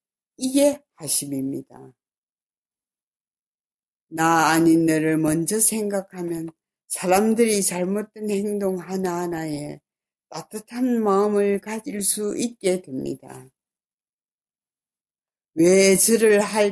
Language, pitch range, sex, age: Korean, 155-200 Hz, female, 60-79